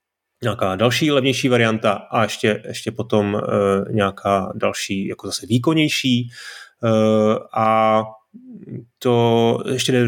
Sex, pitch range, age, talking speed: male, 100-120 Hz, 30-49, 115 wpm